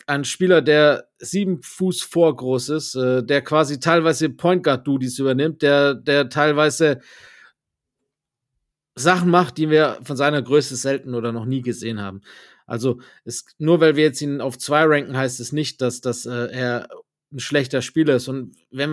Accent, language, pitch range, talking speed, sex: German, German, 130-160 Hz, 175 wpm, male